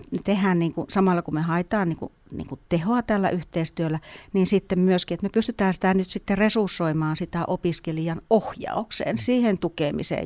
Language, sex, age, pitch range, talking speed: Finnish, female, 60-79, 165-205 Hz, 165 wpm